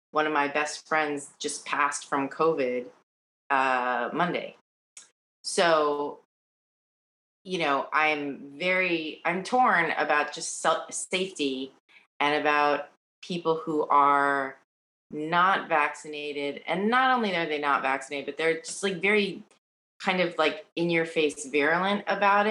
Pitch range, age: 145-190 Hz, 30-49